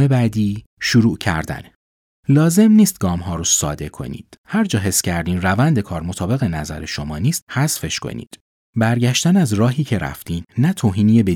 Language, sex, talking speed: Persian, male, 155 wpm